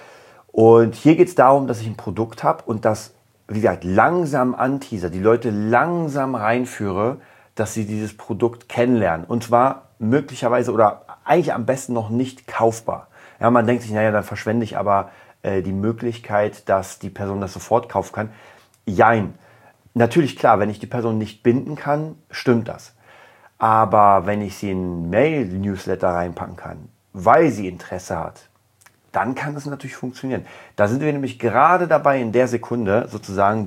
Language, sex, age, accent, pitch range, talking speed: German, male, 40-59, German, 100-125 Hz, 170 wpm